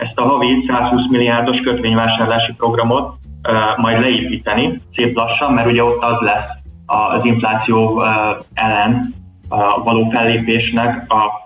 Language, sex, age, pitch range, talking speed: Hungarian, male, 20-39, 110-125 Hz, 130 wpm